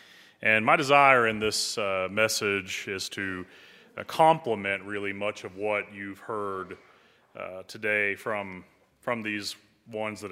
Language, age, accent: English, 30-49, American